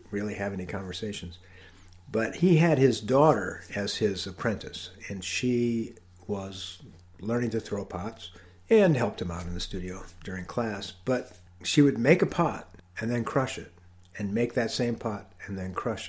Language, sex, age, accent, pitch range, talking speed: English, male, 50-69, American, 90-120 Hz, 170 wpm